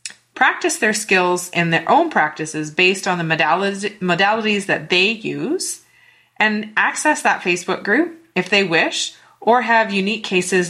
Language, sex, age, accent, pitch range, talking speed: English, female, 30-49, American, 165-220 Hz, 145 wpm